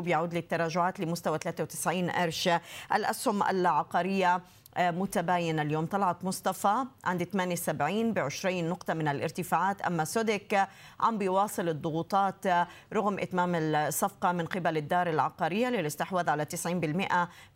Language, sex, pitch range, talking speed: Arabic, female, 170-195 Hz, 115 wpm